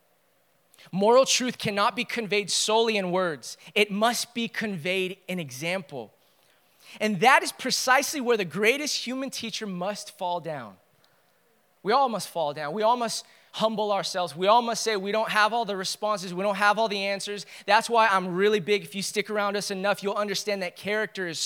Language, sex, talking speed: English, male, 190 wpm